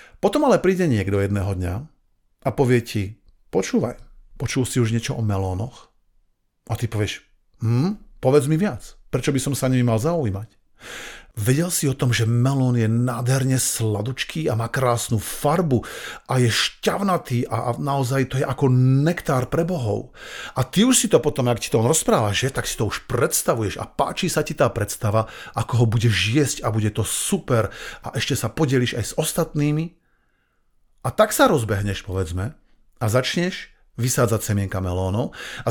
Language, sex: Slovak, male